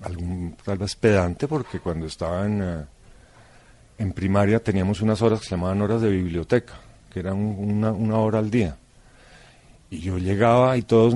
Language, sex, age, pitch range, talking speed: Spanish, male, 50-69, 90-115 Hz, 170 wpm